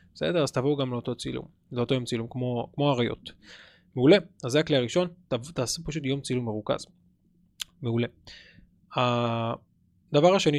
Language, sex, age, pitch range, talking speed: Hebrew, male, 20-39, 120-150 Hz, 140 wpm